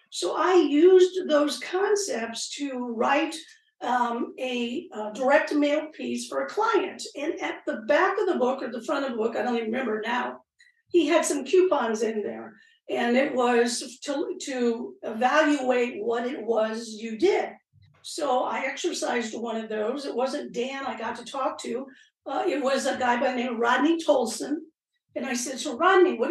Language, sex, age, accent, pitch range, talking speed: English, female, 50-69, American, 245-330 Hz, 185 wpm